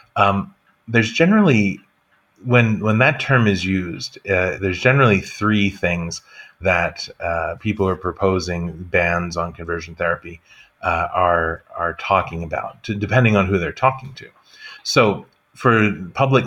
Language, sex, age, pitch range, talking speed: English, male, 30-49, 90-110 Hz, 140 wpm